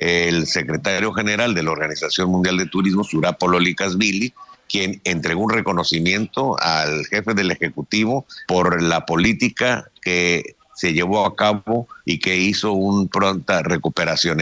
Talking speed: 135 wpm